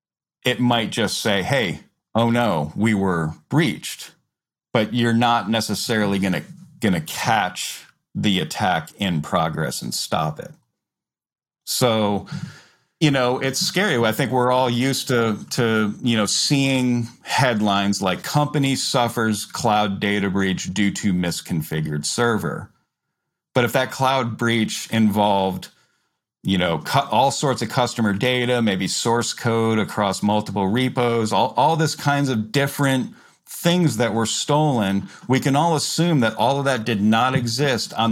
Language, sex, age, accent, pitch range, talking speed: English, male, 40-59, American, 105-130 Hz, 145 wpm